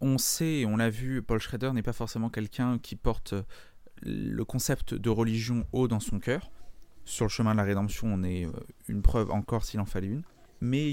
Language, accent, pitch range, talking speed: French, French, 105-130 Hz, 205 wpm